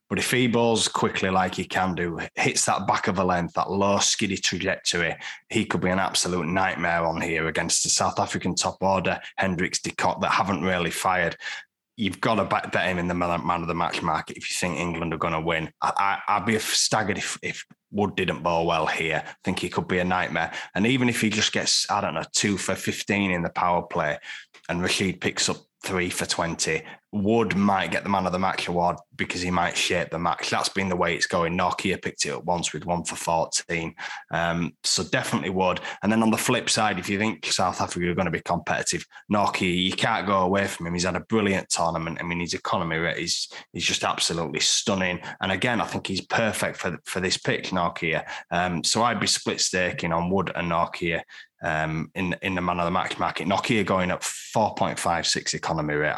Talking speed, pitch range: 220 wpm, 85-100 Hz